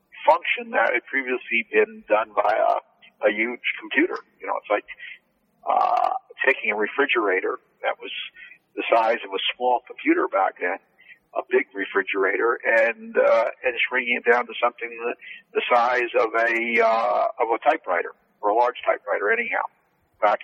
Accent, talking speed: American, 160 wpm